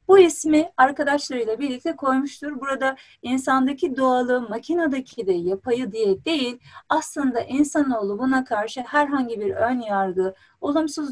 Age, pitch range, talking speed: 40-59, 235-300 Hz, 120 wpm